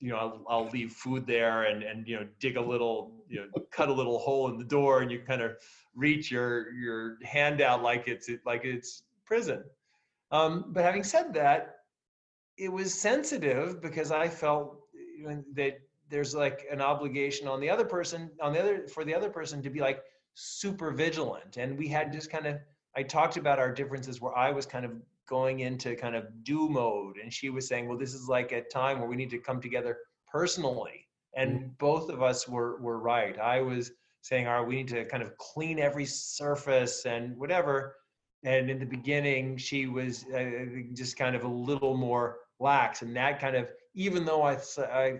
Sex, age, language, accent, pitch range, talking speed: male, 30-49, English, American, 125-150 Hz, 205 wpm